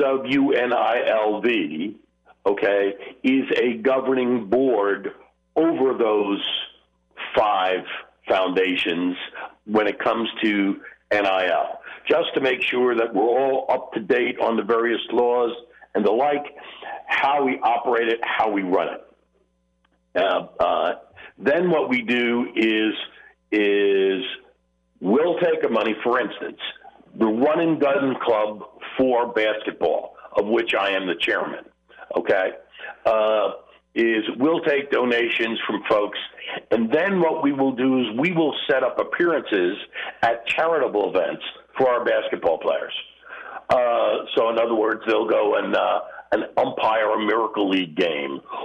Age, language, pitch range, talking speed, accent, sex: 60-79, English, 100-130 Hz, 140 wpm, American, male